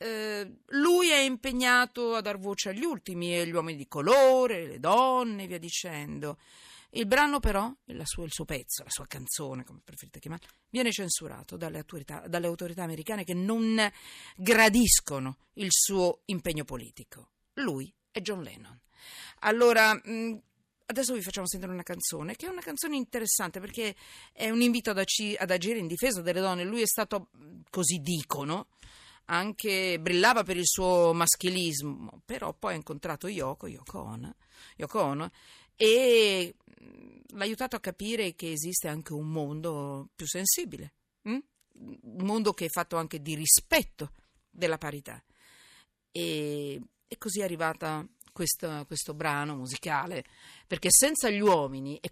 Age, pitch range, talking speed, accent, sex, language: 40-59, 160-225 Hz, 145 wpm, native, female, Italian